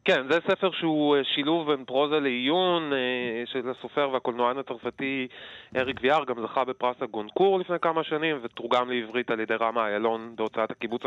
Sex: male